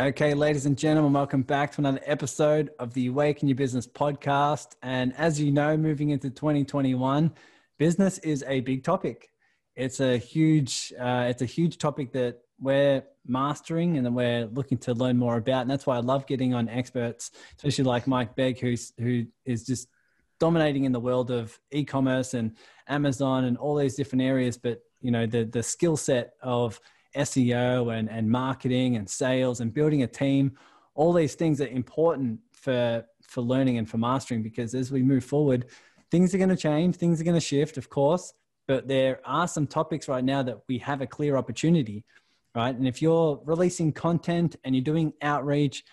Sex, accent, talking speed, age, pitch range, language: male, Australian, 190 wpm, 20-39, 125-150 Hz, English